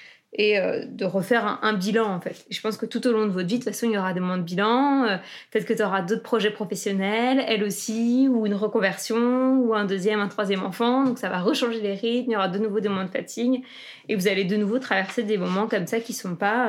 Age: 20-39